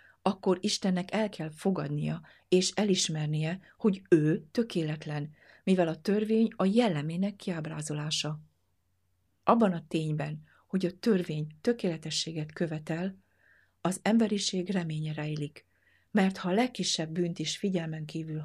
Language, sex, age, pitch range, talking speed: Hungarian, female, 60-79, 150-185 Hz, 115 wpm